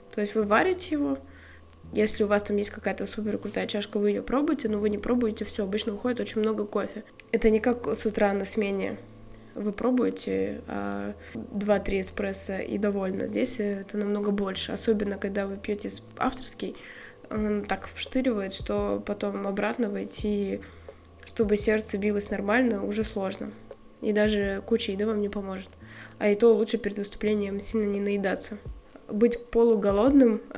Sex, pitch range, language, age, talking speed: female, 200-220 Hz, Russian, 20-39, 160 wpm